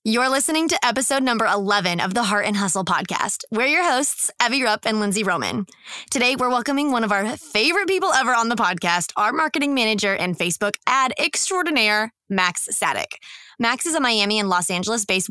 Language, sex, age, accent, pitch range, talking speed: English, female, 20-39, American, 205-265 Hz, 190 wpm